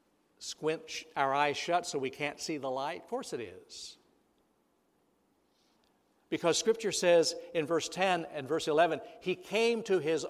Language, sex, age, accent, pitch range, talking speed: English, male, 60-79, American, 145-200 Hz, 155 wpm